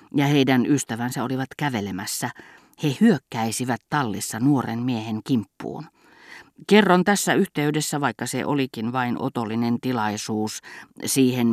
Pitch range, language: 115-155 Hz, Finnish